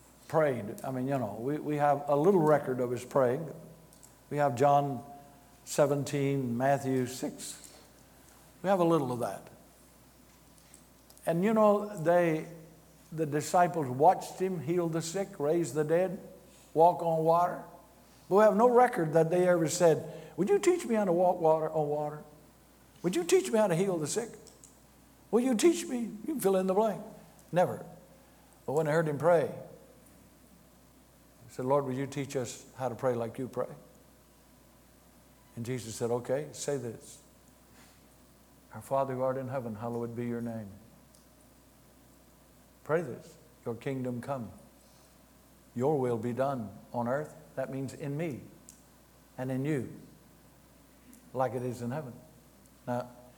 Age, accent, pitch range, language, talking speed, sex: 60-79, American, 130-175 Hz, English, 155 wpm, male